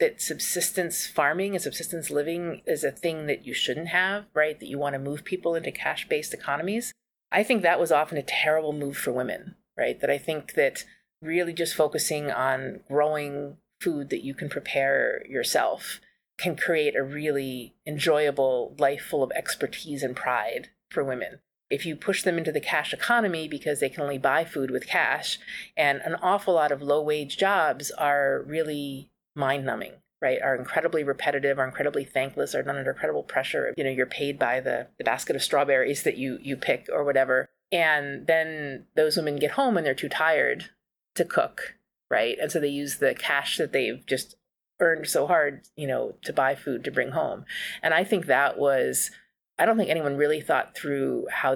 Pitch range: 140-175 Hz